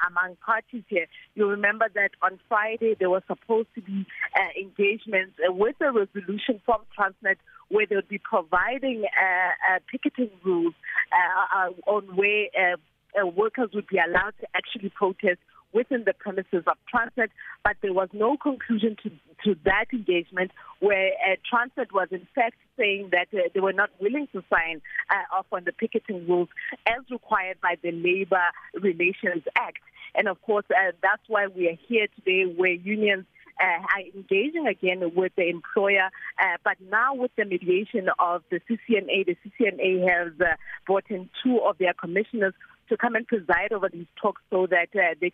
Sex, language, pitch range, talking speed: female, English, 180-220 Hz, 175 wpm